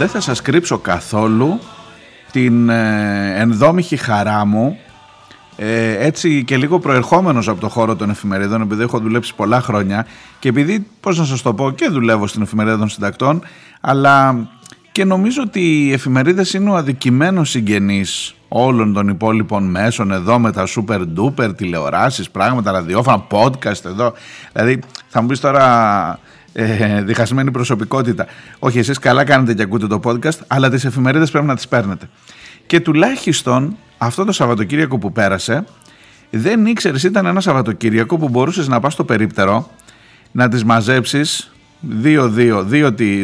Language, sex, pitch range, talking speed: Greek, male, 110-145 Hz, 150 wpm